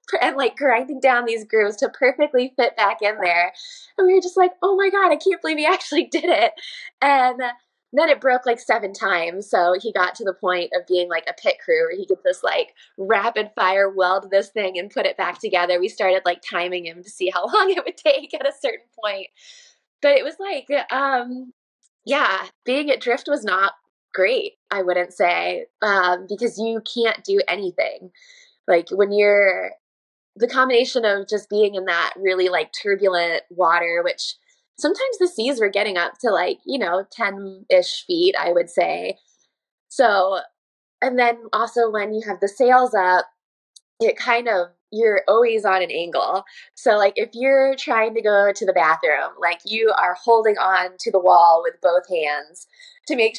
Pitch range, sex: 190-315 Hz, female